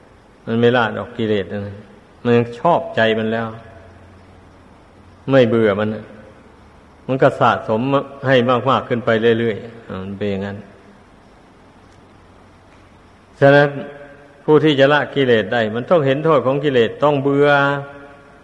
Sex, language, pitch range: male, Thai, 110-135 Hz